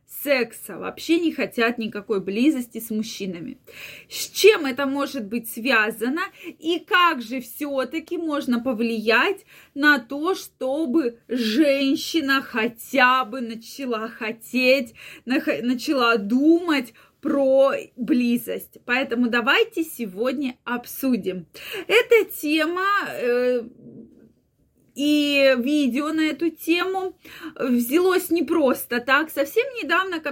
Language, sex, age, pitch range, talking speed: Russian, female, 20-39, 240-320 Hz, 105 wpm